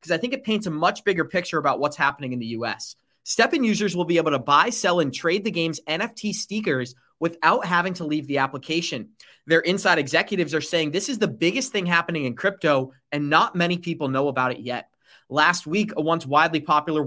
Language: English